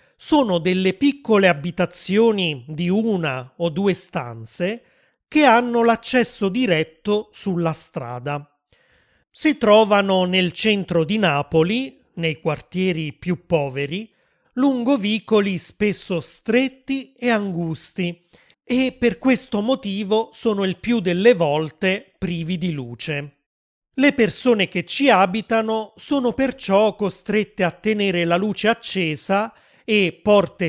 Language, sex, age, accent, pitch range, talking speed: Italian, male, 30-49, native, 165-225 Hz, 110 wpm